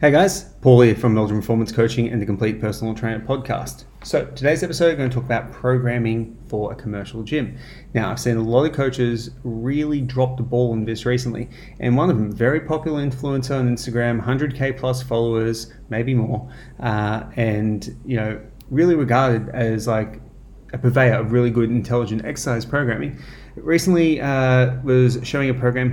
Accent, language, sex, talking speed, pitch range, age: Australian, English, male, 180 wpm, 120-135 Hz, 30-49